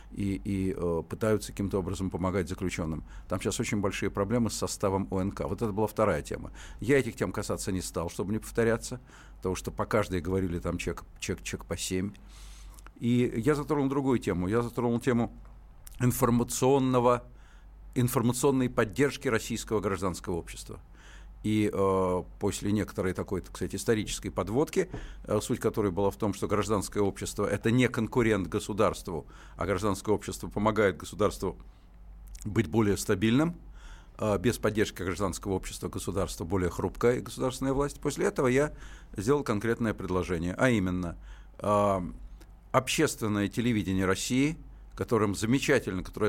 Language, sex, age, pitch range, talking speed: Russian, male, 50-69, 95-120 Hz, 140 wpm